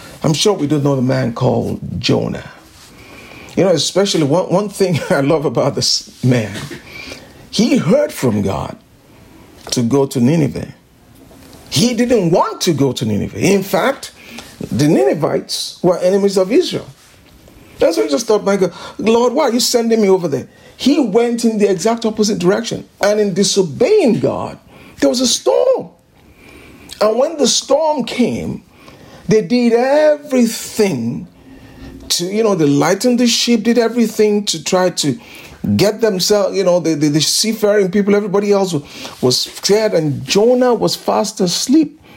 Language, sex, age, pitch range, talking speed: English, male, 50-69, 170-240 Hz, 160 wpm